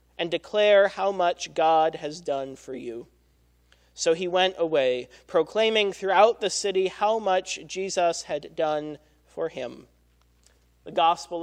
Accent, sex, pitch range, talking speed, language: American, male, 145-200 Hz, 135 wpm, English